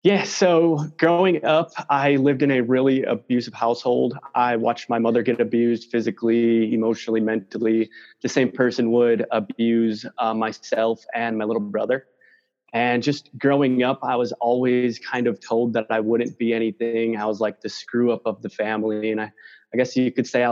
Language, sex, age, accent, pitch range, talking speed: English, male, 20-39, American, 115-130 Hz, 185 wpm